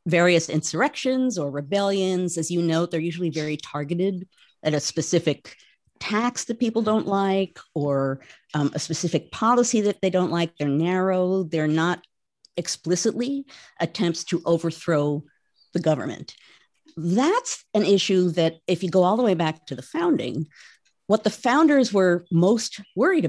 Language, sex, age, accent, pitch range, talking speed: English, female, 50-69, American, 155-205 Hz, 150 wpm